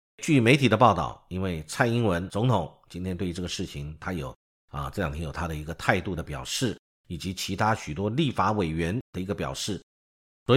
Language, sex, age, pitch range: Chinese, male, 50-69, 80-130 Hz